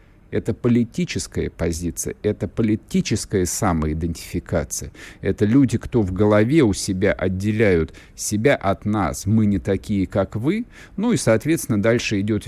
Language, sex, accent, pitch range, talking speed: Russian, male, native, 100-130 Hz, 130 wpm